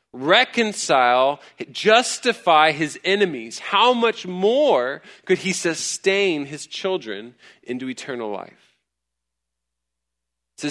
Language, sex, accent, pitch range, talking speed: English, male, American, 115-170 Hz, 90 wpm